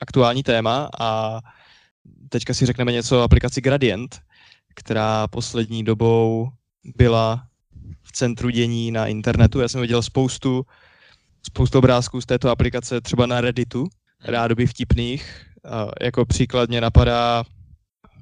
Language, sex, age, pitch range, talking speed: Czech, male, 20-39, 115-130 Hz, 120 wpm